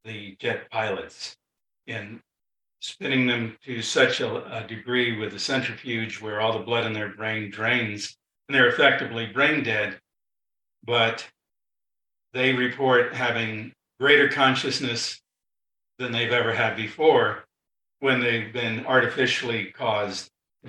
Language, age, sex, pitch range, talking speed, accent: English, 50-69, male, 115-135 Hz, 130 wpm, American